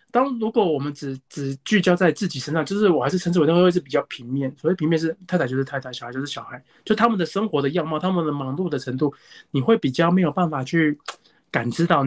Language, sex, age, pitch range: Chinese, male, 20-39, 140-195 Hz